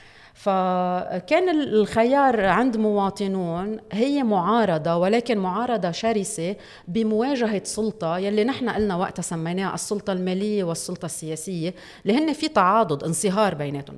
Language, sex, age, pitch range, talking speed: Arabic, female, 40-59, 170-225 Hz, 105 wpm